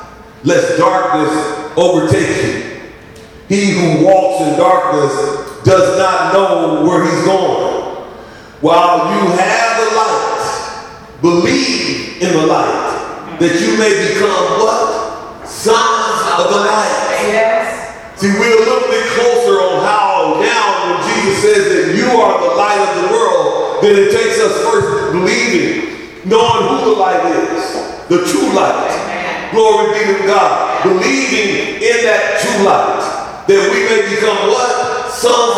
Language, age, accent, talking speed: English, 40-59, American, 140 wpm